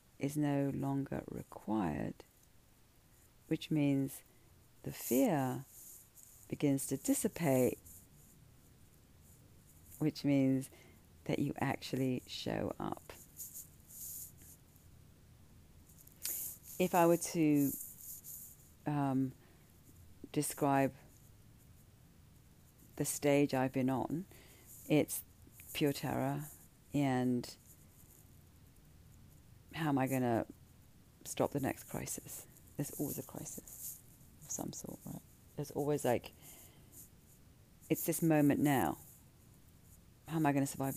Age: 40-59